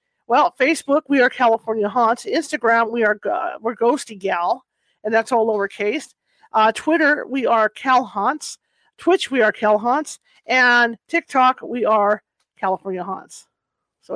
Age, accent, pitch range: 40-59, American, 220-275 Hz